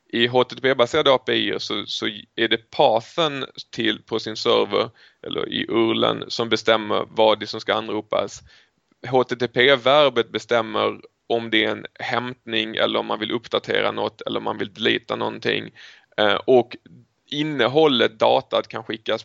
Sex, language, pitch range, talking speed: male, English, 115-140 Hz, 140 wpm